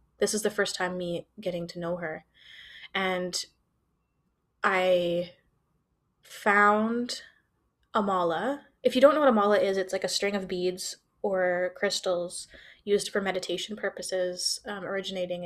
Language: English